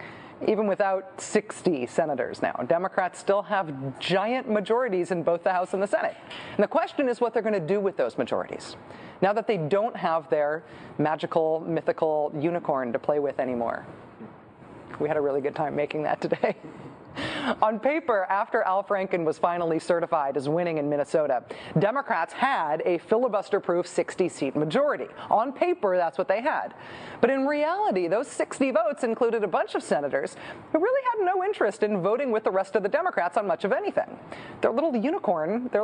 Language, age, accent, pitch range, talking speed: English, 40-59, American, 180-255 Hz, 180 wpm